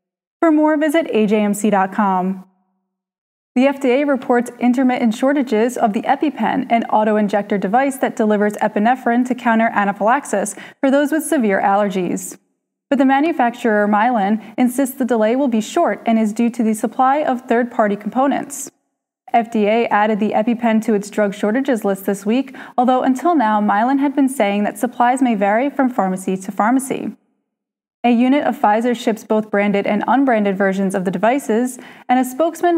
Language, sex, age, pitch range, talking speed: English, female, 20-39, 210-265 Hz, 160 wpm